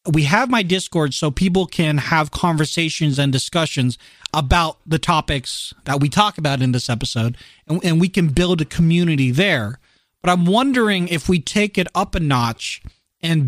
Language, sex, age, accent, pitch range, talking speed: English, male, 40-59, American, 135-180 Hz, 175 wpm